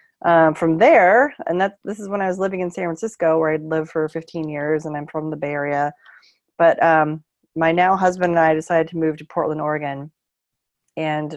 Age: 30-49